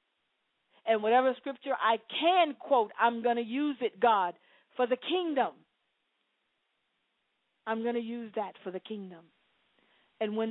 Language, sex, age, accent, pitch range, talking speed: English, female, 40-59, American, 190-235 Hz, 145 wpm